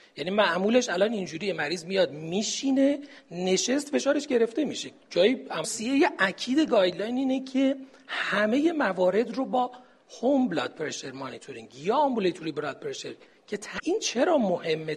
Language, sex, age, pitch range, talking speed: Persian, male, 40-59, 175-265 Hz, 130 wpm